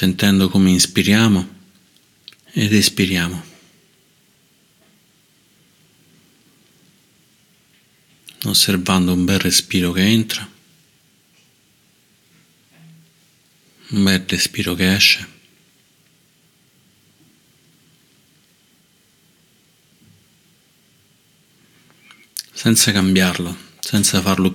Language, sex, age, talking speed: Italian, male, 50-69, 50 wpm